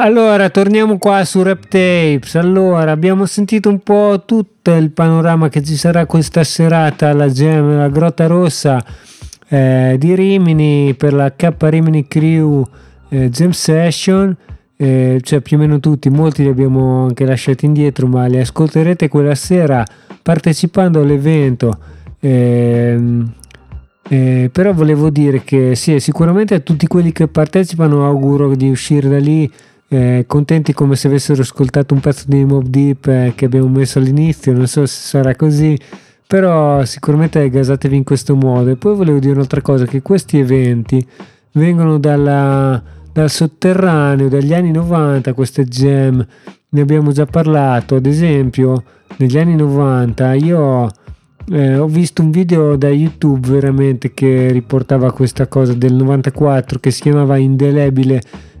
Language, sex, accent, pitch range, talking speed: Italian, male, native, 135-160 Hz, 150 wpm